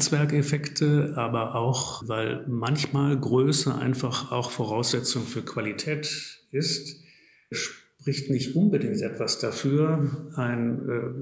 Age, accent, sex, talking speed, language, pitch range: 50-69, German, male, 100 wpm, German, 120-145 Hz